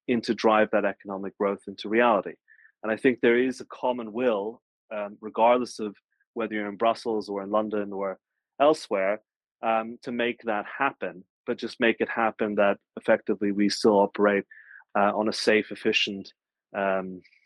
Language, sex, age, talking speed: English, male, 30-49, 170 wpm